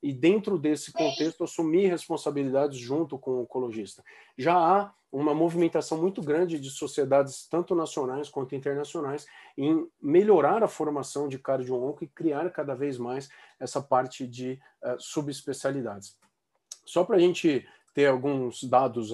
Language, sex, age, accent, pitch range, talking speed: Portuguese, male, 40-59, Brazilian, 135-165 Hz, 140 wpm